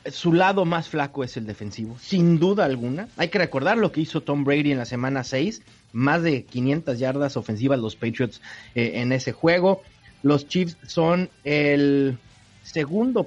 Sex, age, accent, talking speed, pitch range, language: male, 30-49, Mexican, 170 wpm, 135-185 Hz, Spanish